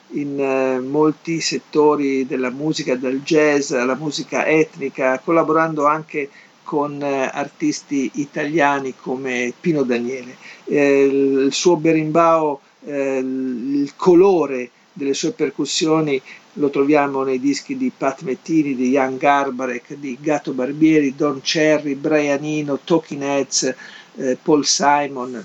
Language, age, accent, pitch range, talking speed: Italian, 50-69, native, 135-170 Hz, 125 wpm